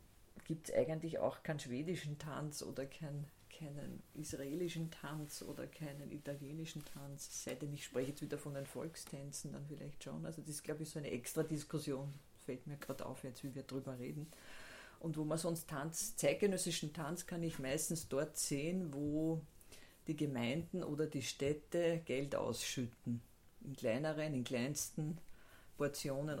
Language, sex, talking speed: English, female, 160 wpm